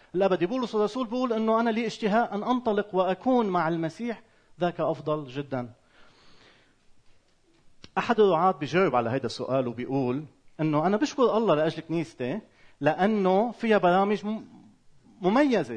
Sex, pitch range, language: male, 155-220 Hz, Arabic